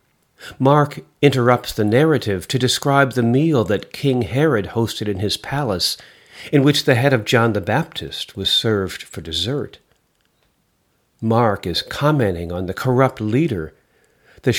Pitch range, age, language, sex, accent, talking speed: 105-140 Hz, 50-69, English, male, American, 145 wpm